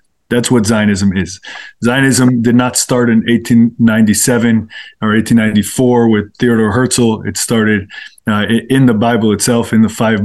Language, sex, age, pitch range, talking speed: English, male, 20-39, 110-120 Hz, 145 wpm